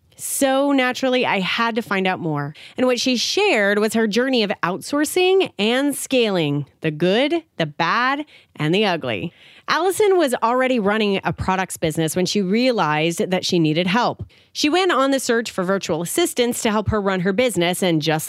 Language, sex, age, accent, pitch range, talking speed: English, female, 30-49, American, 185-255 Hz, 185 wpm